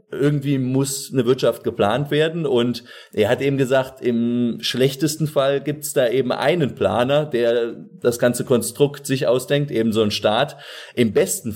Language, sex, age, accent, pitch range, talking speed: German, male, 30-49, German, 105-135 Hz, 160 wpm